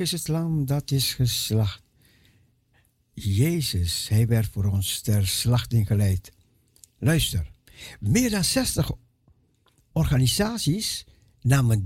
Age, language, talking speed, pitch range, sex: 60-79, Dutch, 100 wpm, 115-155 Hz, male